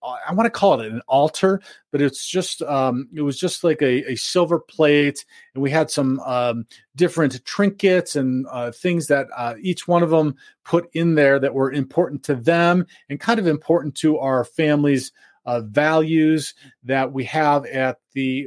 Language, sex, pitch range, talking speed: English, male, 130-160 Hz, 185 wpm